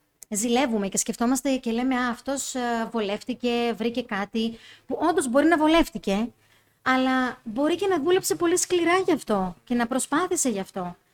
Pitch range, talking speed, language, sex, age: 225-295 Hz, 150 wpm, Greek, female, 20-39